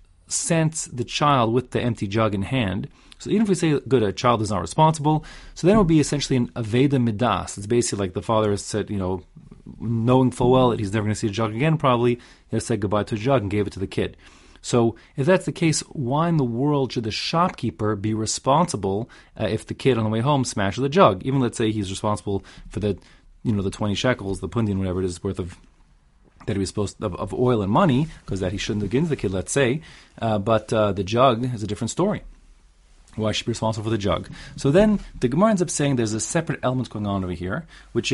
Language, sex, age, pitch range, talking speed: English, male, 30-49, 100-135 Hz, 255 wpm